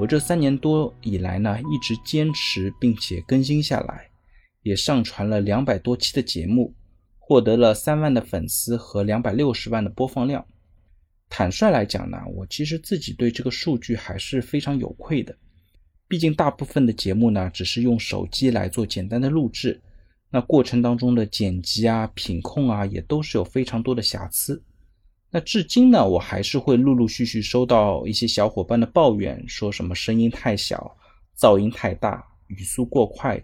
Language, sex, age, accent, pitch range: Chinese, male, 20-39, native, 95-140 Hz